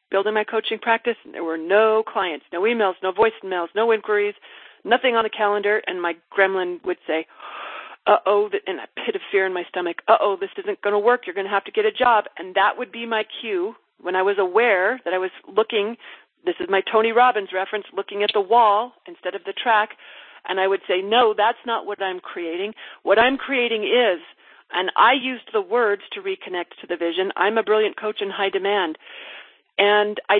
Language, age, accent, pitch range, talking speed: English, 40-59, American, 195-245 Hz, 215 wpm